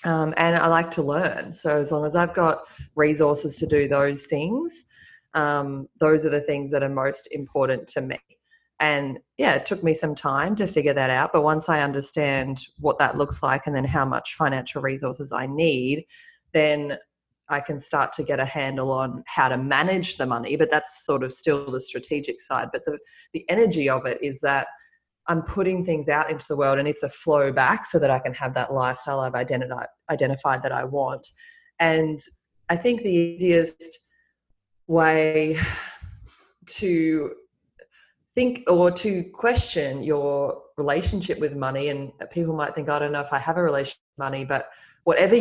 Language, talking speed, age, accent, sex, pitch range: English, 185 wpm, 20-39, Australian, female, 140-170 Hz